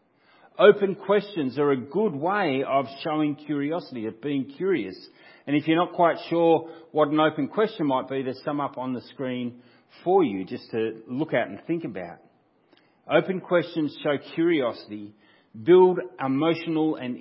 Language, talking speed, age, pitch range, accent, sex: English, 160 wpm, 40-59, 135-180 Hz, Australian, male